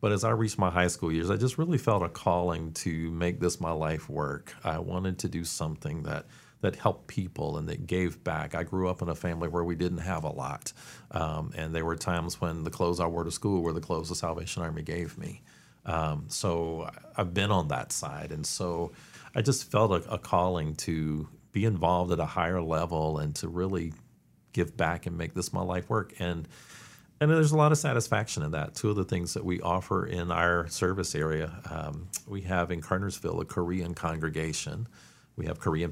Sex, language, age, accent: male, English, 40-59, American